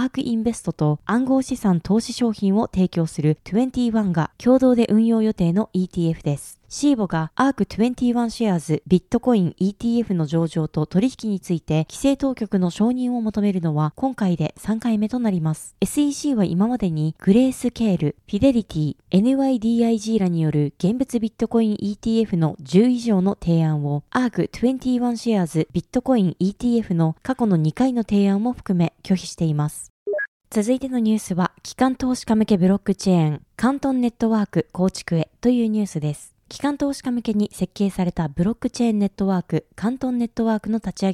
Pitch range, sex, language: 175-240 Hz, female, Japanese